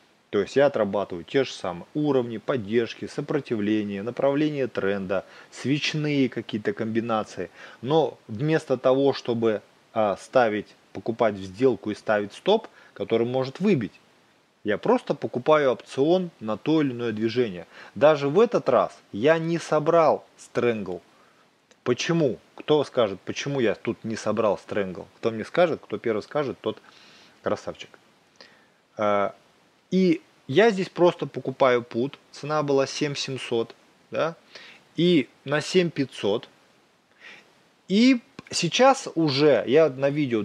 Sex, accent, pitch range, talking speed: male, native, 115-155 Hz, 120 wpm